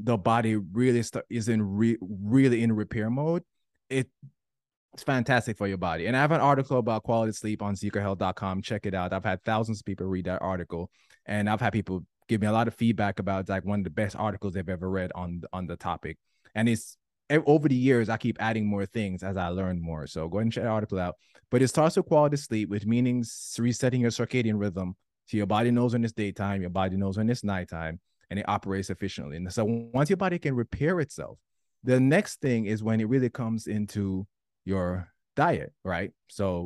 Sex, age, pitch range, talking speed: male, 20-39, 95-120 Hz, 220 wpm